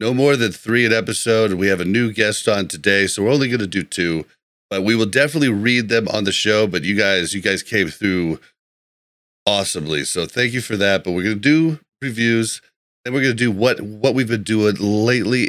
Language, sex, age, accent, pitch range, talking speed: English, male, 30-49, American, 100-120 Hz, 230 wpm